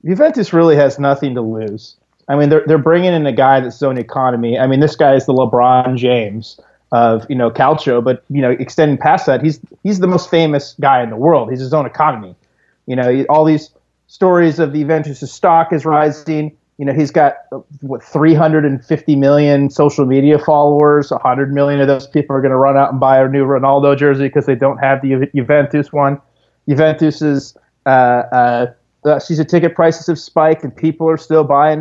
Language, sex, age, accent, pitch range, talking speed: English, male, 30-49, American, 130-155 Hz, 210 wpm